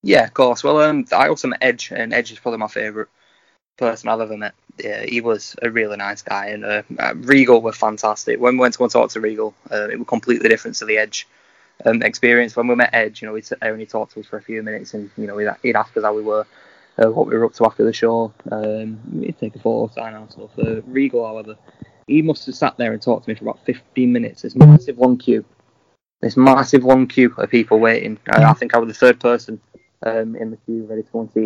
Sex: male